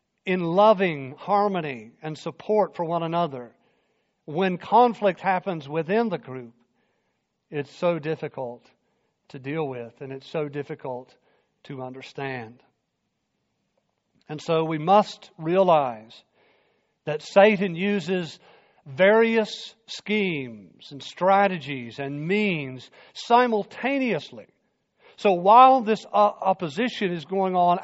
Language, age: English, 50-69